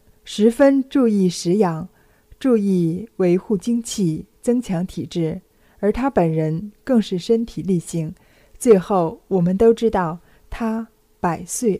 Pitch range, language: 170-225 Hz, Chinese